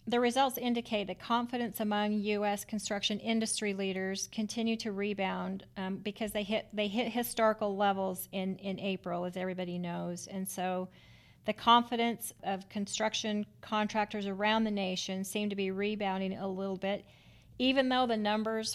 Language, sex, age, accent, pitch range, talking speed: English, female, 40-59, American, 195-220 Hz, 155 wpm